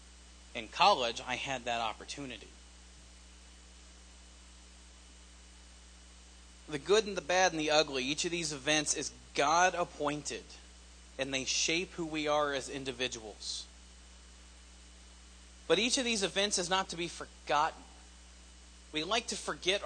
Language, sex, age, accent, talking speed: English, male, 40-59, American, 130 wpm